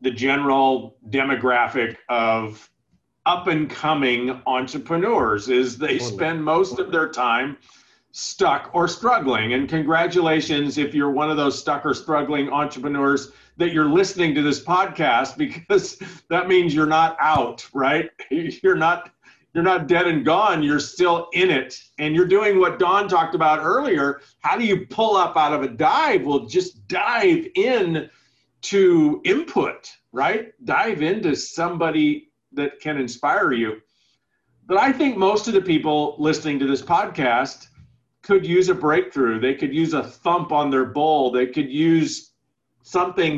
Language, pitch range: English, 140-210 Hz